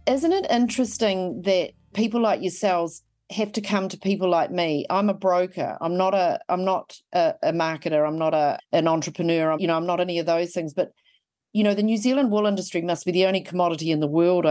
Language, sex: English, female